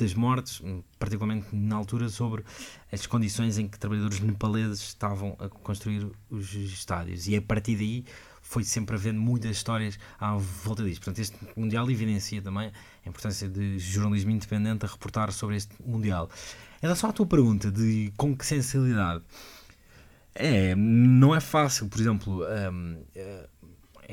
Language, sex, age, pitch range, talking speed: Portuguese, male, 20-39, 95-110 Hz, 150 wpm